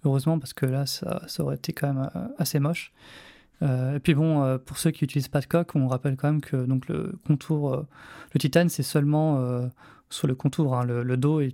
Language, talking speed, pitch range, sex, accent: French, 235 wpm, 140-165 Hz, male, French